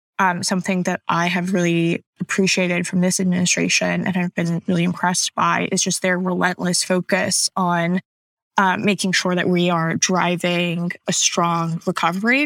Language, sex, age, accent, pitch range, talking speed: English, female, 10-29, American, 175-195 Hz, 155 wpm